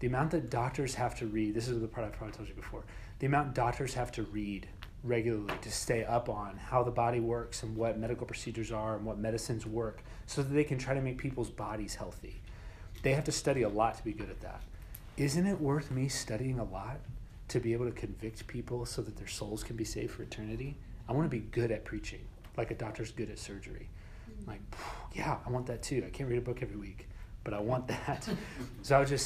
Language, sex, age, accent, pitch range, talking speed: English, male, 30-49, American, 105-125 Hz, 240 wpm